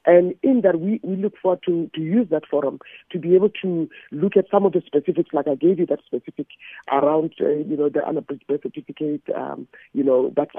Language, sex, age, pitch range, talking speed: English, male, 50-69, 150-190 Hz, 225 wpm